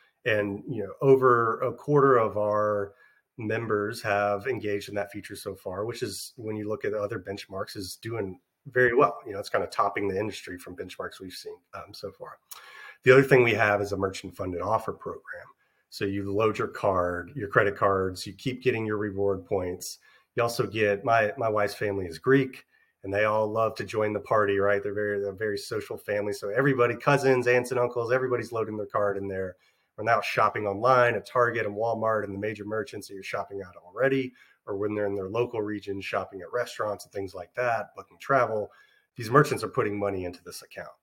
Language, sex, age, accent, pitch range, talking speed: English, male, 30-49, American, 100-125 Hz, 215 wpm